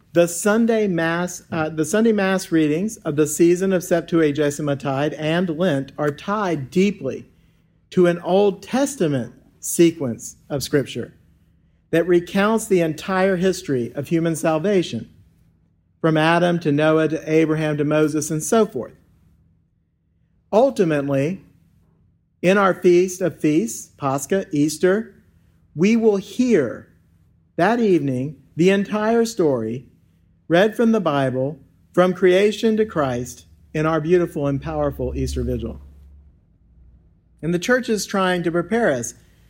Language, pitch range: English, 135-185 Hz